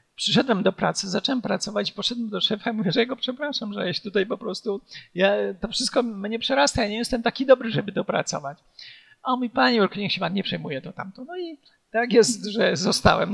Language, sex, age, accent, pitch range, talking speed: Polish, male, 50-69, native, 190-245 Hz, 205 wpm